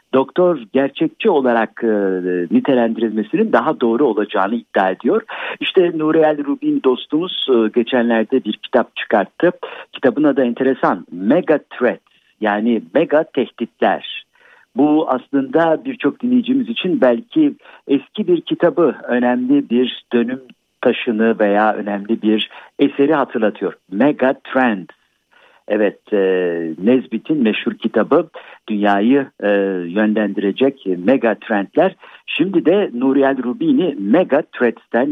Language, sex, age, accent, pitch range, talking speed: Turkish, male, 60-79, native, 110-140 Hz, 110 wpm